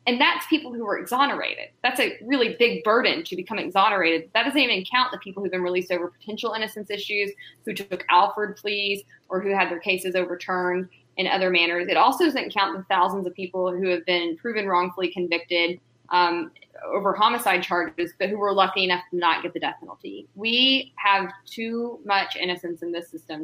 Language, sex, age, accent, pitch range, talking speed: English, female, 20-39, American, 175-215 Hz, 195 wpm